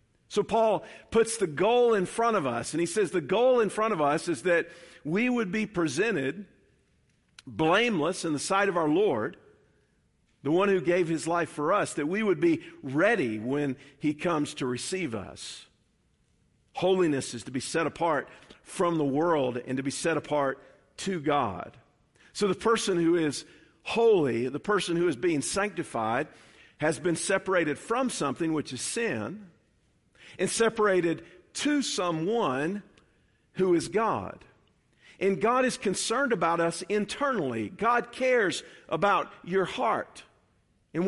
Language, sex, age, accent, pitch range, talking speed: English, male, 50-69, American, 145-200 Hz, 155 wpm